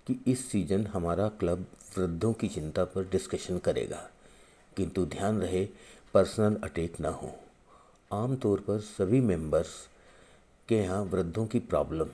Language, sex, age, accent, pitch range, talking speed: Hindi, male, 50-69, native, 90-110 Hz, 140 wpm